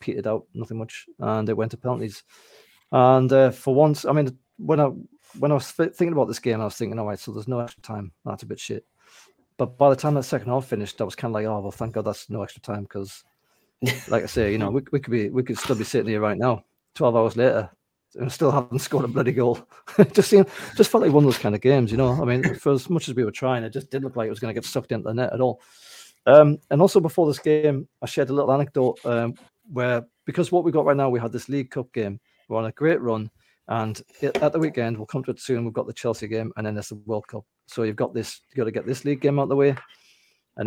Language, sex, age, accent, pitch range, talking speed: English, male, 30-49, British, 110-140 Hz, 280 wpm